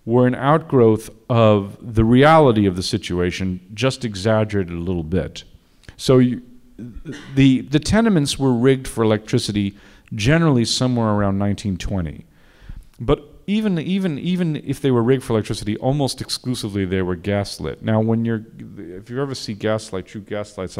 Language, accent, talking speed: English, American, 150 wpm